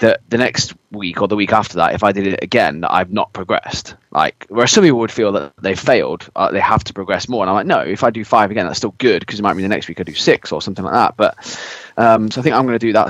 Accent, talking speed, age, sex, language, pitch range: British, 315 wpm, 20-39, male, English, 95-110 Hz